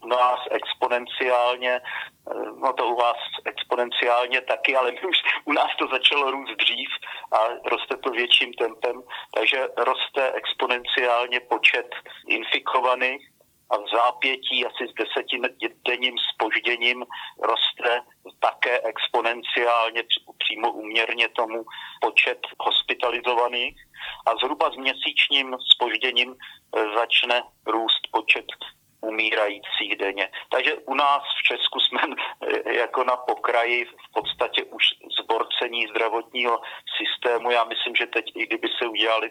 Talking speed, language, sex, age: 115 wpm, Slovak, male, 40-59